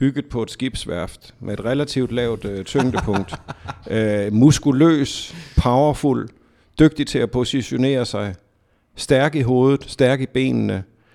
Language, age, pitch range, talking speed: Danish, 50-69, 105-135 Hz, 130 wpm